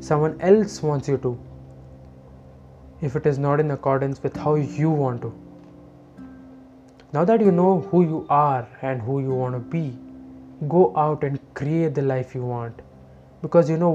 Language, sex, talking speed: English, male, 170 wpm